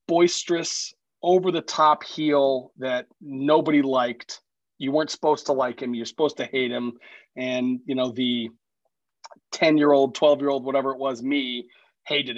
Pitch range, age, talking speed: 125-155 Hz, 30-49, 135 wpm